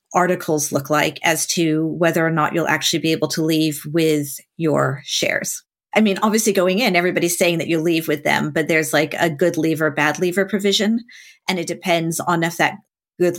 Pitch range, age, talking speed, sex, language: 150-180 Hz, 40-59, 200 wpm, female, English